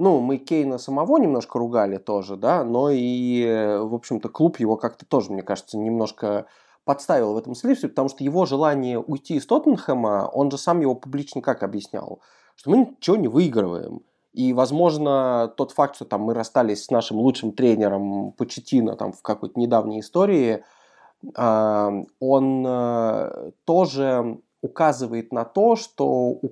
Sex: male